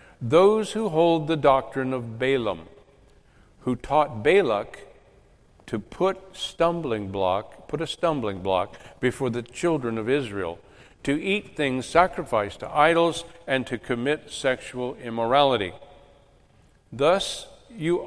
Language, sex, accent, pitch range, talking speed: English, male, American, 110-145 Hz, 120 wpm